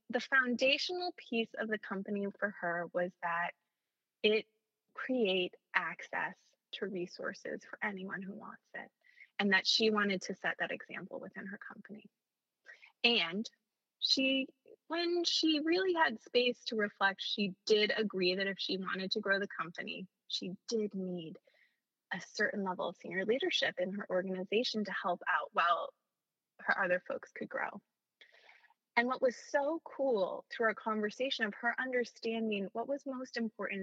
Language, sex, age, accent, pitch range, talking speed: English, female, 20-39, American, 190-240 Hz, 155 wpm